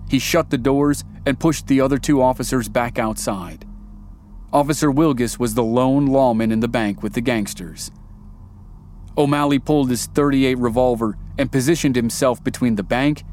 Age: 30-49